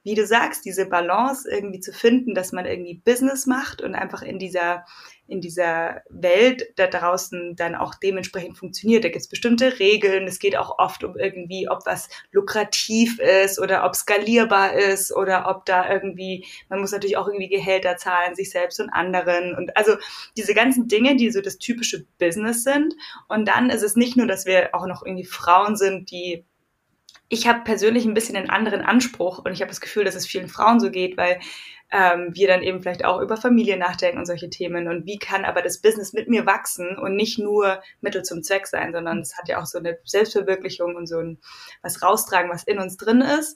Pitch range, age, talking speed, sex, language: 180-215 Hz, 20-39, 210 wpm, female, German